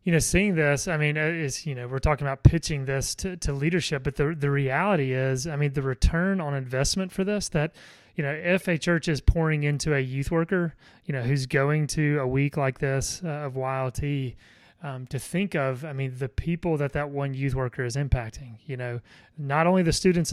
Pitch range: 130-160 Hz